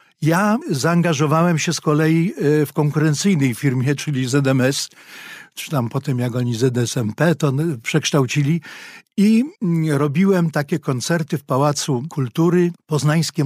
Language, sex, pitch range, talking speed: Polish, male, 140-170 Hz, 115 wpm